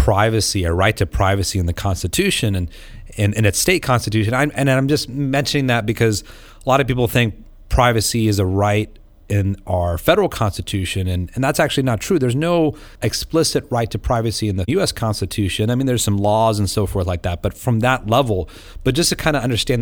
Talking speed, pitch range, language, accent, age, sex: 220 wpm, 95-125 Hz, English, American, 30-49, male